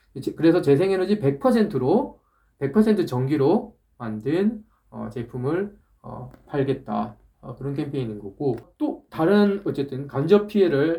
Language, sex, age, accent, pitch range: Korean, male, 20-39, native, 125-175 Hz